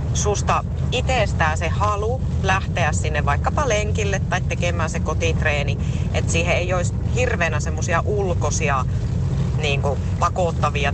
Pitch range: 85-110 Hz